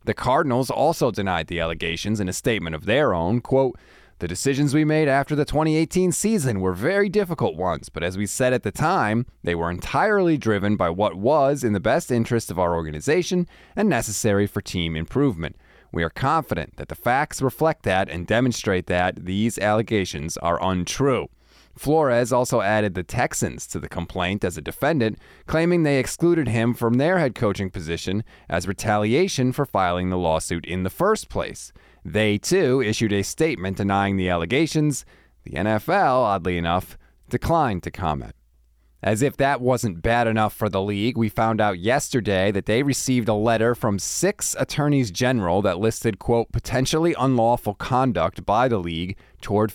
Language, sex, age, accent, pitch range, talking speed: English, male, 20-39, American, 90-130 Hz, 170 wpm